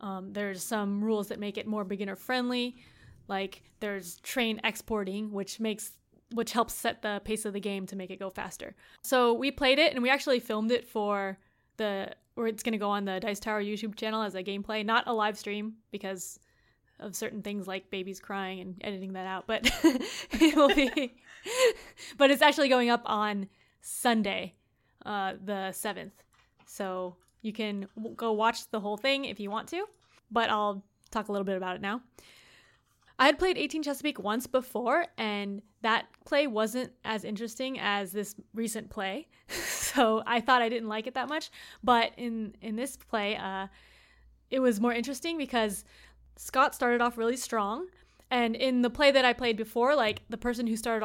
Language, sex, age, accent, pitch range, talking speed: English, female, 20-39, American, 205-245 Hz, 190 wpm